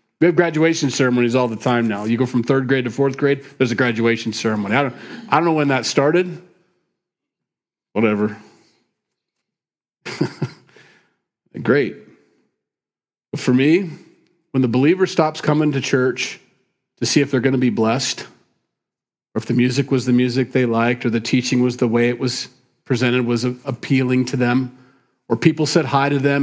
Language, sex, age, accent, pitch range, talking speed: English, male, 40-59, American, 125-155 Hz, 175 wpm